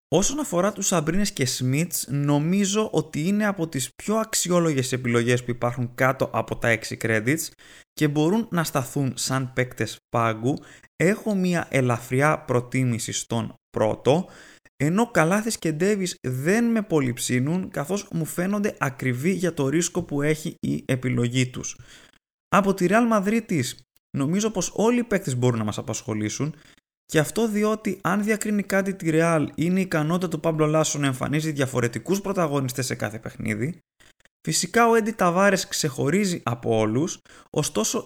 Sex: male